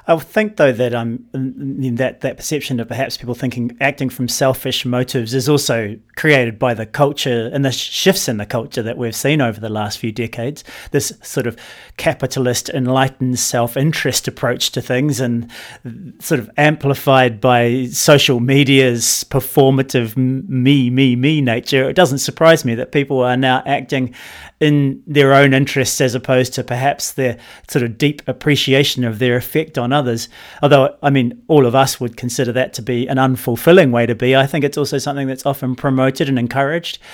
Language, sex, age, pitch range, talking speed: English, male, 30-49, 125-155 Hz, 180 wpm